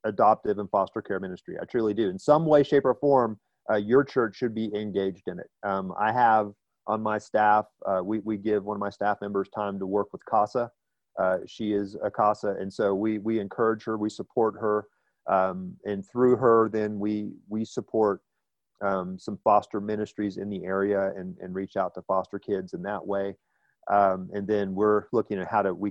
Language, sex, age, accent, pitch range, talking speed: English, male, 40-59, American, 100-120 Hz, 210 wpm